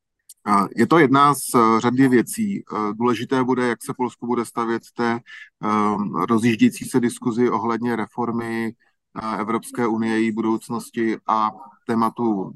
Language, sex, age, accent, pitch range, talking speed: Czech, male, 30-49, native, 110-120 Hz, 120 wpm